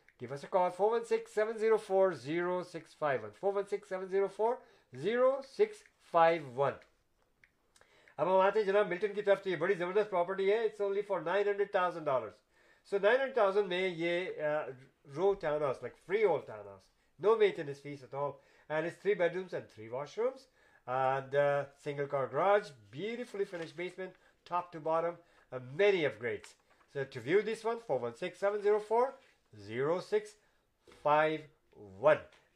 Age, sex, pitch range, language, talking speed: 50-69, male, 160-225 Hz, Urdu, 125 wpm